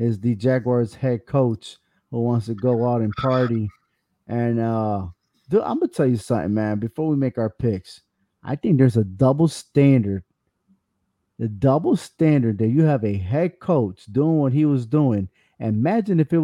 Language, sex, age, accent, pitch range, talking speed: English, male, 30-49, American, 115-145 Hz, 180 wpm